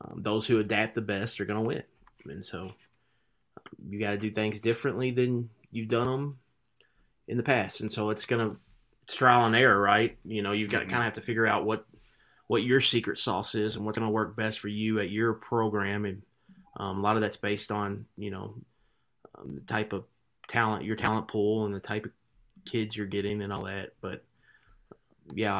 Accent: American